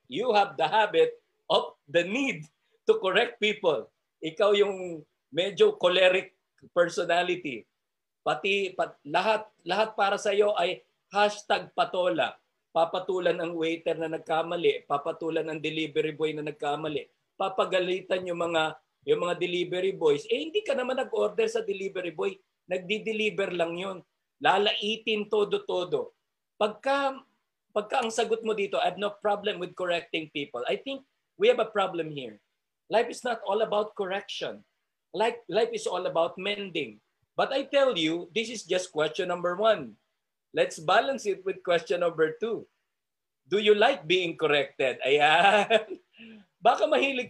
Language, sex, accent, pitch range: Filipino, male, native, 175-265 Hz